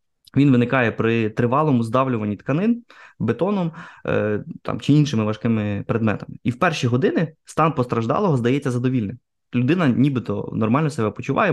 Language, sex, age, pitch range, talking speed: Ukrainian, male, 20-39, 115-140 Hz, 130 wpm